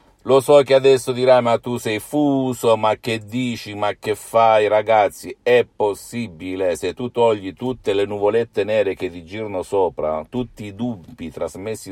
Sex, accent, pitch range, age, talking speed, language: male, native, 90-110 Hz, 50-69, 165 wpm, Italian